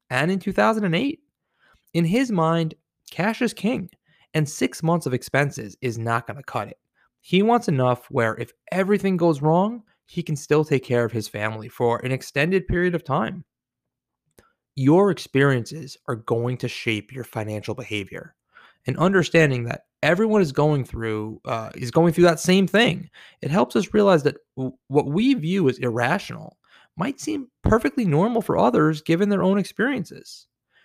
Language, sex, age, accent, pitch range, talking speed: English, male, 20-39, American, 120-175 Hz, 165 wpm